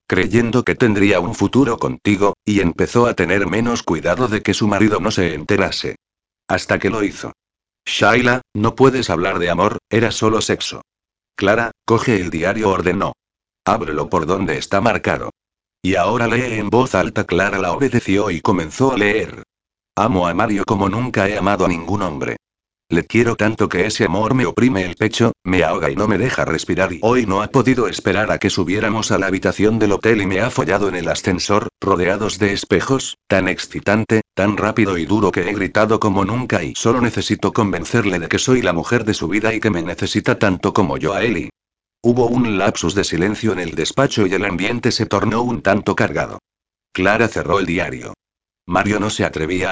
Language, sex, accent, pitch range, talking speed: Spanish, male, Spanish, 95-115 Hz, 195 wpm